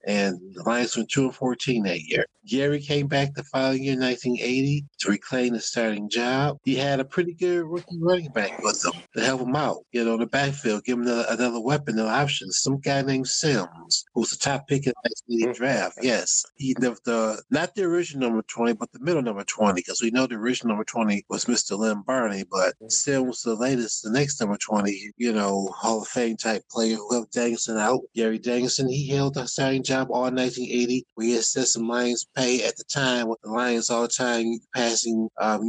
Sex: male